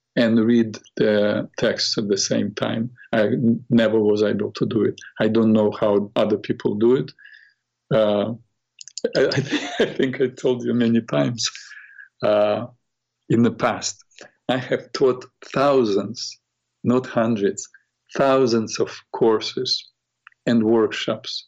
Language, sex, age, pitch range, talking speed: English, male, 50-69, 110-125 Hz, 130 wpm